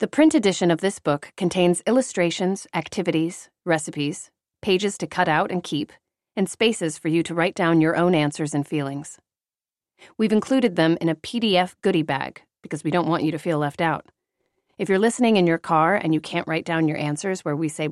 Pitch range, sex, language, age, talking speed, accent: 150-190 Hz, female, English, 30-49, 205 wpm, American